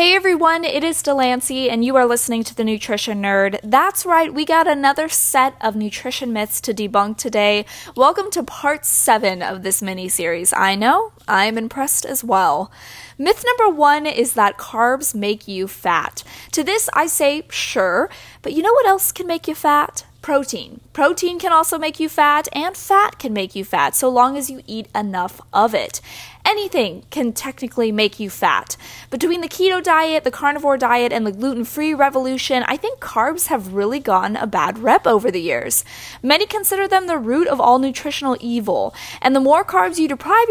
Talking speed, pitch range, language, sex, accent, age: 185 wpm, 225-315 Hz, English, female, American, 10-29